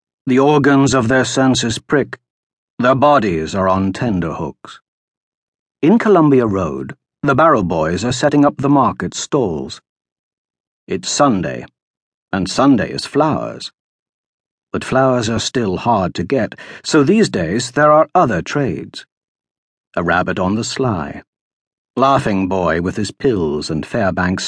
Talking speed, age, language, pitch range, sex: 135 wpm, 60-79, English, 95-135 Hz, male